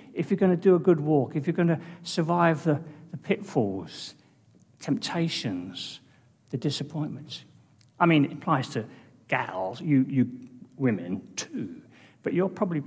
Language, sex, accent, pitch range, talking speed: English, male, British, 135-205 Hz, 150 wpm